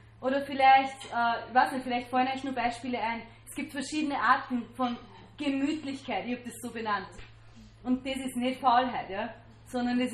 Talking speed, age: 190 wpm, 30-49